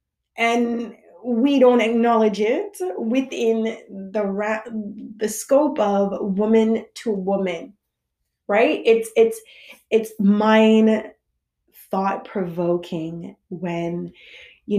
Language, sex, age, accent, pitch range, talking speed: English, female, 20-39, American, 190-250 Hz, 95 wpm